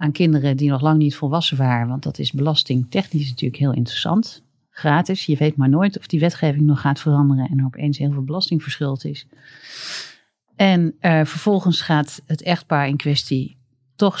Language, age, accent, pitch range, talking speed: Dutch, 40-59, Dutch, 135-165 Hz, 180 wpm